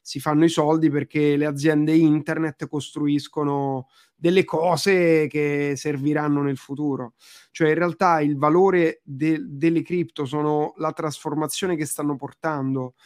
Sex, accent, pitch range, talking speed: male, native, 140-160 Hz, 130 wpm